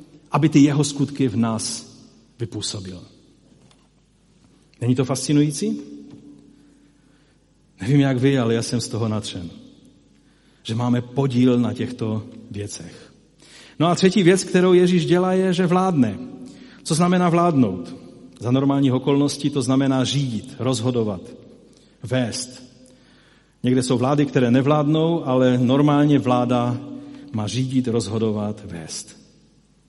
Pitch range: 125-150 Hz